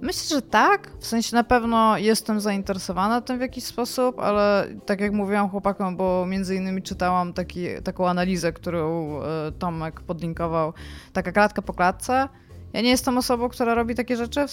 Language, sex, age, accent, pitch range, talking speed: Polish, female, 20-39, native, 170-215 Hz, 170 wpm